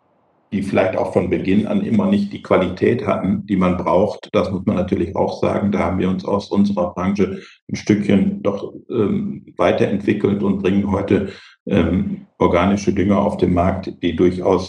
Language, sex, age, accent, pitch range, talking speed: German, male, 50-69, German, 90-100 Hz, 175 wpm